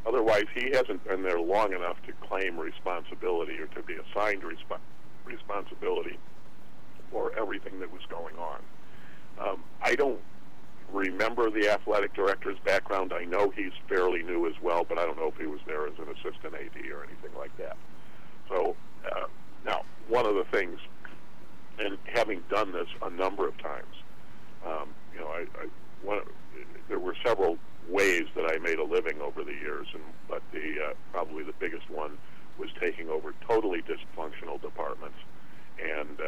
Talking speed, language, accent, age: 165 wpm, English, American, 50-69